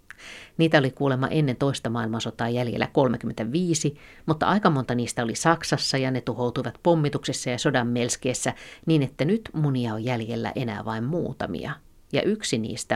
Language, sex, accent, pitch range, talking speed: Finnish, female, native, 115-145 Hz, 150 wpm